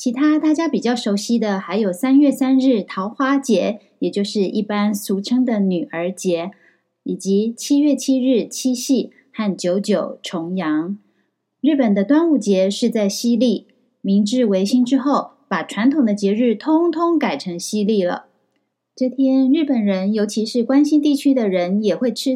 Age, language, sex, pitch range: 20-39, Chinese, female, 195-260 Hz